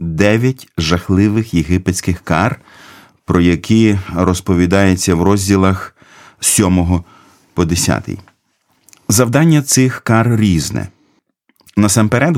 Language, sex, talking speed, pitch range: Ukrainian, male, 80 wpm, 95-125 Hz